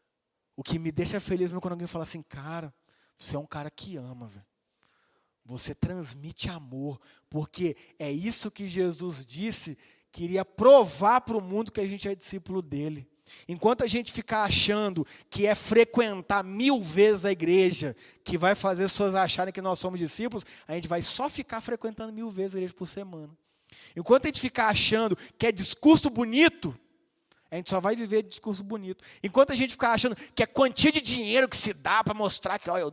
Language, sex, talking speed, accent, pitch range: Portuguese, male, 195 wpm, Brazilian, 175-240 Hz